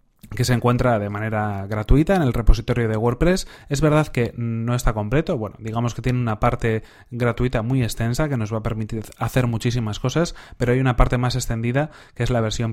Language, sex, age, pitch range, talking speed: Spanish, male, 30-49, 115-135 Hz, 205 wpm